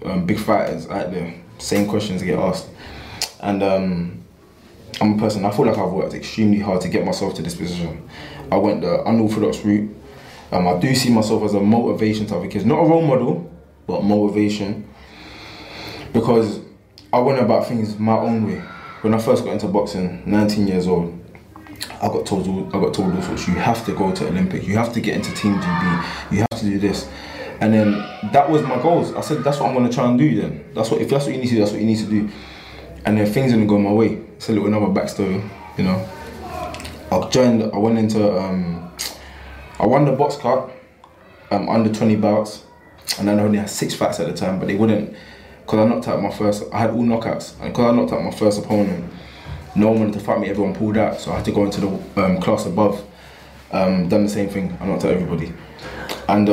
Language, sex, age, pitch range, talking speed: English, male, 20-39, 95-110 Hz, 220 wpm